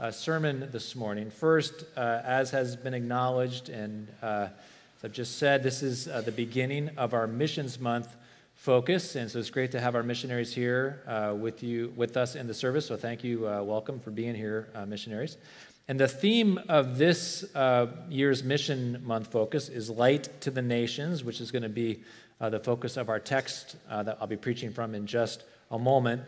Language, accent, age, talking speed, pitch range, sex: English, American, 40-59, 195 wpm, 120-145 Hz, male